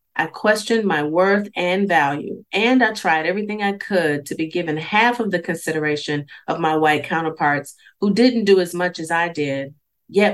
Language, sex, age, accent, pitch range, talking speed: English, female, 30-49, American, 155-200 Hz, 185 wpm